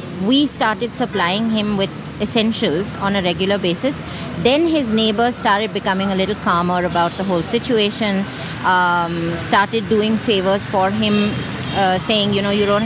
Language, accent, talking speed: English, Indian, 160 wpm